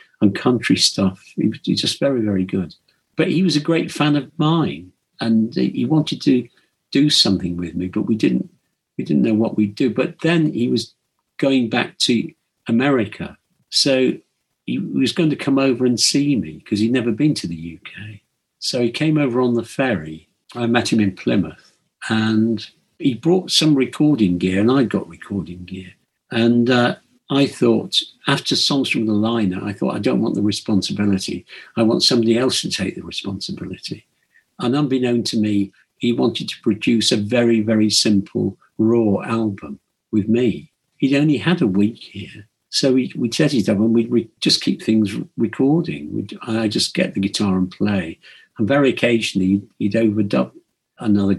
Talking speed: 185 wpm